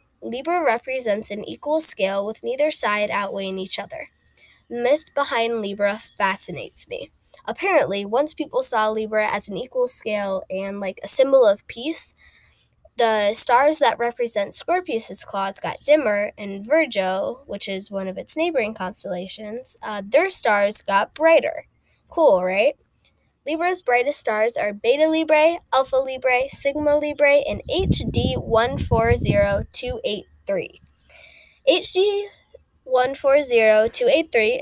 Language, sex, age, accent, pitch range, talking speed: English, female, 10-29, American, 205-300 Hz, 120 wpm